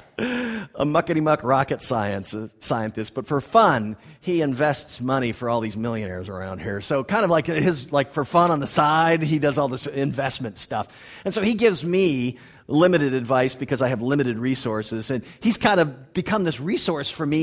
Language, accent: English, American